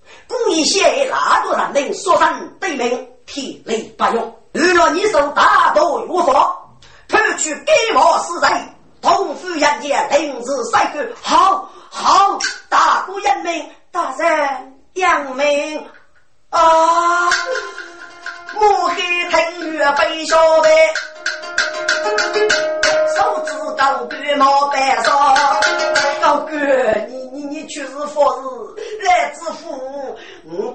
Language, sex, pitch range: Chinese, female, 275-350 Hz